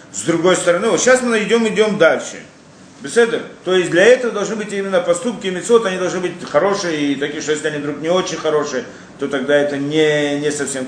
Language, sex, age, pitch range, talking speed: Russian, male, 40-59, 155-205 Hz, 205 wpm